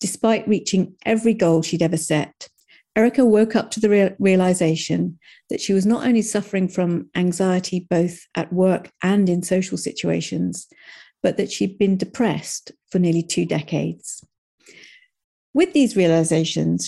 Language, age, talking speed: English, 50-69, 140 wpm